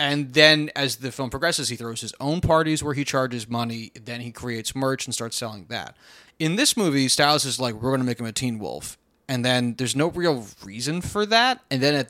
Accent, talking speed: American, 240 wpm